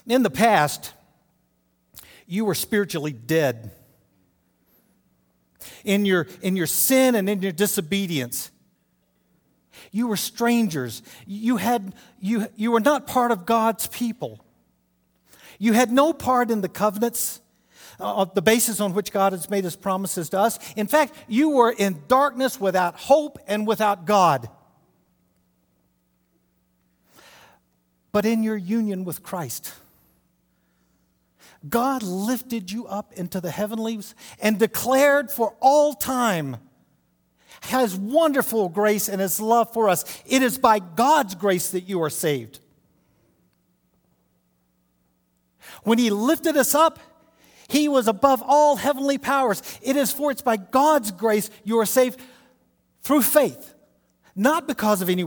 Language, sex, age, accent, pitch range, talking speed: English, male, 50-69, American, 160-235 Hz, 130 wpm